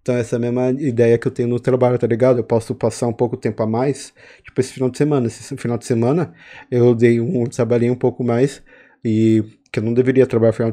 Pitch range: 115-130 Hz